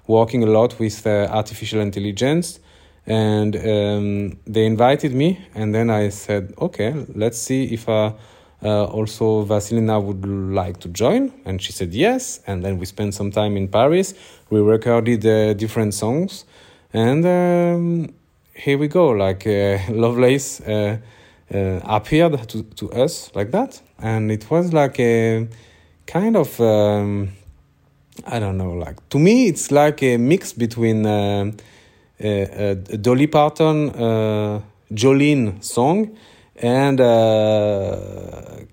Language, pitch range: Greek, 105-125 Hz